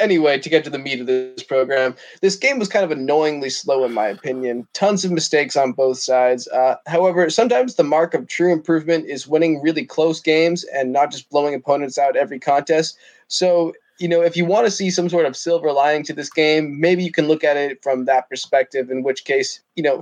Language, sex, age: English, male, 20-39